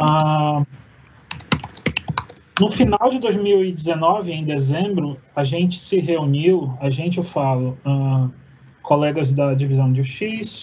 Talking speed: 105 wpm